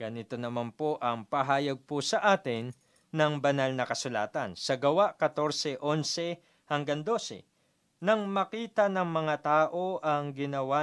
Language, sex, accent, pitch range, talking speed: Filipino, male, native, 140-175 Hz, 135 wpm